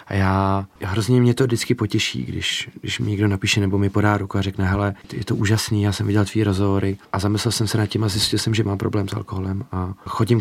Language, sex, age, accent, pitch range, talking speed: Czech, male, 30-49, native, 100-120 Hz, 255 wpm